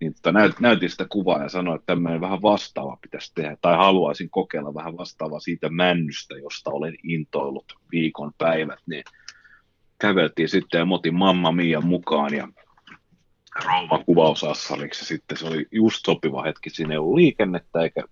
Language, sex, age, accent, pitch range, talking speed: Finnish, male, 30-49, native, 80-95 Hz, 140 wpm